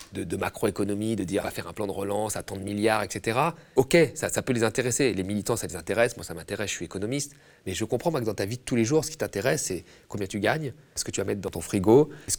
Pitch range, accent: 95-135 Hz, French